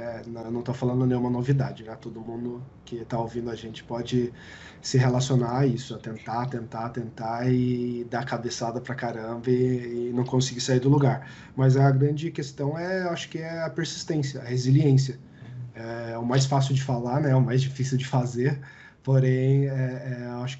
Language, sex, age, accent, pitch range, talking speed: Portuguese, male, 20-39, Brazilian, 125-140 Hz, 195 wpm